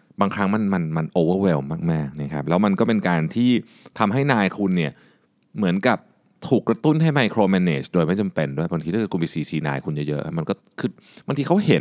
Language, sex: Thai, male